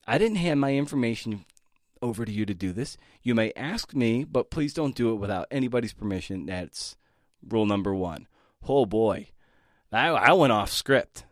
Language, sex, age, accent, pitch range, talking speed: English, male, 30-49, American, 95-130 Hz, 180 wpm